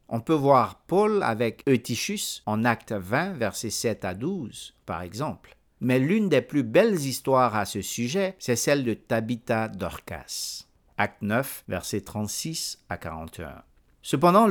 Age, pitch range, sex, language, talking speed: 50-69, 105-155 Hz, male, French, 150 wpm